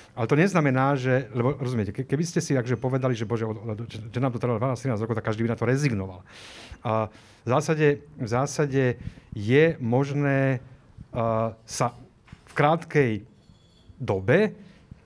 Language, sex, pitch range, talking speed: Slovak, male, 110-135 Hz, 140 wpm